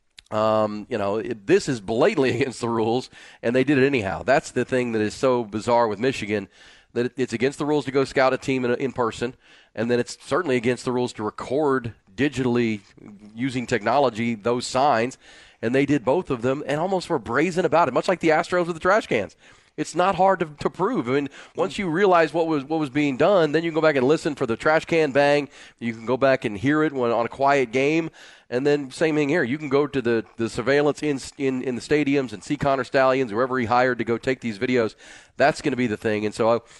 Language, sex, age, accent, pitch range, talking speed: English, male, 40-59, American, 115-150 Hz, 245 wpm